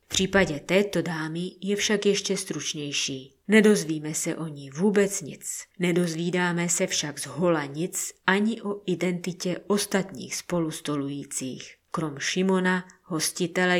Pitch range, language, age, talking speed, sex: 155-185 Hz, Czech, 30-49, 120 wpm, female